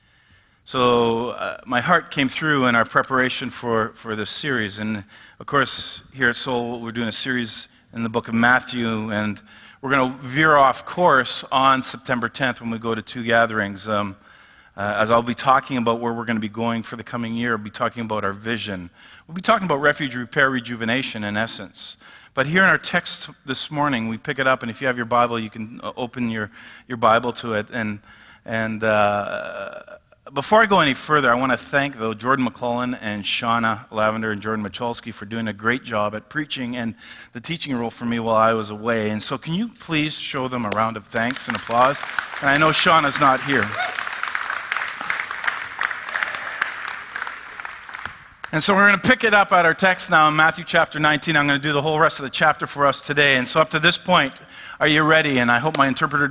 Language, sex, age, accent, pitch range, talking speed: English, male, 40-59, American, 115-145 Hz, 215 wpm